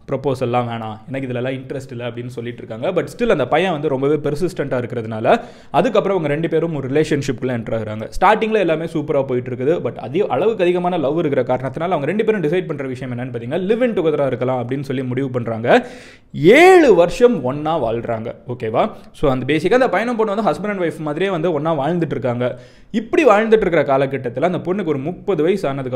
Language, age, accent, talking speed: Tamil, 20-39, native, 185 wpm